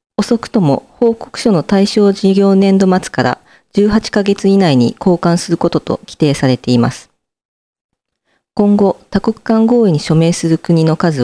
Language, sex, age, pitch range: Japanese, female, 40-59, 140-210 Hz